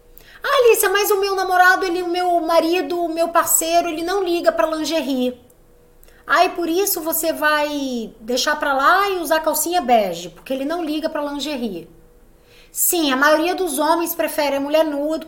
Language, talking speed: Portuguese, 185 wpm